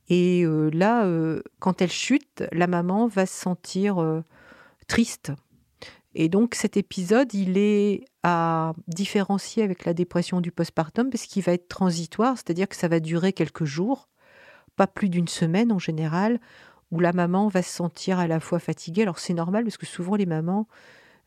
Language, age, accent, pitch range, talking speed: French, 50-69, French, 165-205 Hz, 180 wpm